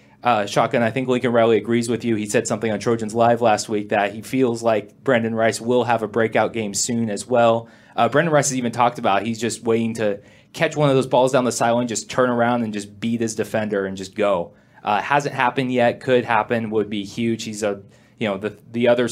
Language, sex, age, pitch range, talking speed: English, male, 20-39, 110-125 Hz, 240 wpm